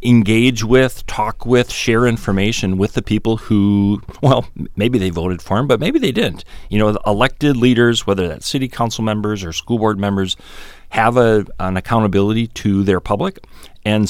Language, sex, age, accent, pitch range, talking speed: English, male, 40-59, American, 90-110 Hz, 180 wpm